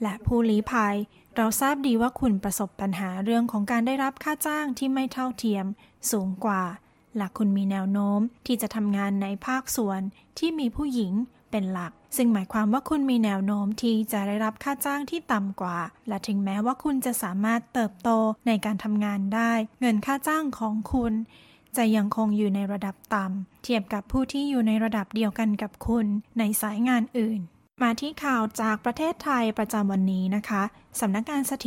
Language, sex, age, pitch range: Thai, female, 20-39, 200-240 Hz